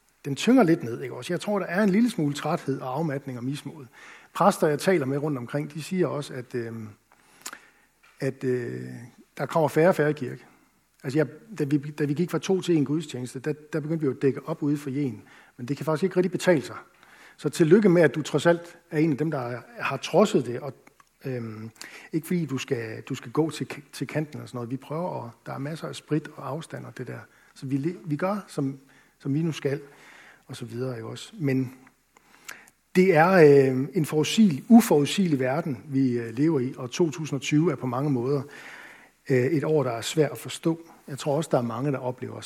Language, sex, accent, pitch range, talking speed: Danish, male, native, 130-160 Hz, 225 wpm